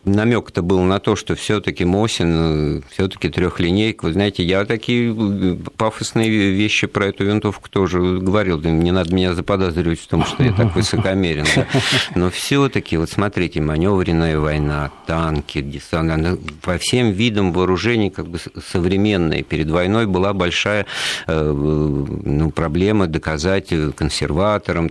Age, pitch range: 50-69, 80-100 Hz